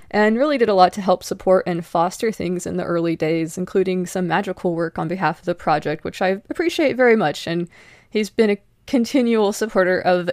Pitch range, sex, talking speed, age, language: 170-200 Hz, female, 210 wpm, 20-39, English